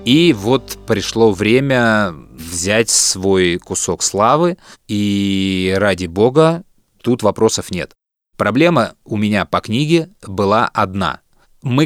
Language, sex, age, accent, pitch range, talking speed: Russian, male, 20-39, native, 105-150 Hz, 110 wpm